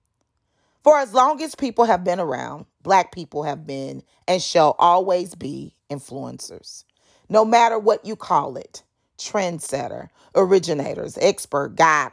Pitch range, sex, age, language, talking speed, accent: 165-230 Hz, female, 40-59, English, 135 wpm, American